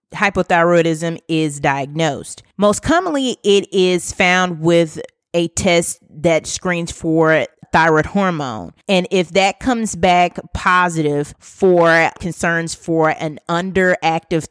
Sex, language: female, English